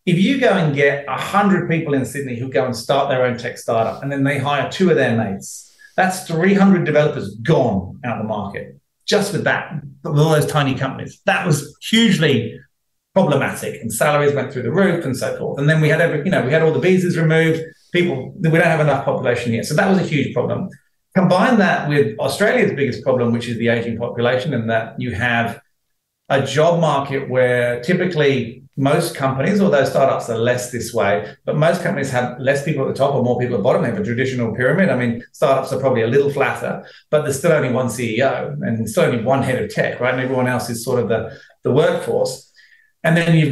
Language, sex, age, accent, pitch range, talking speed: English, male, 40-59, British, 125-170 Hz, 225 wpm